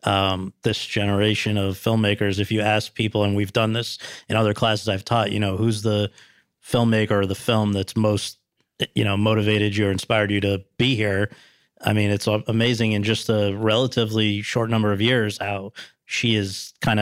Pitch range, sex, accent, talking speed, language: 105-125 Hz, male, American, 195 wpm, English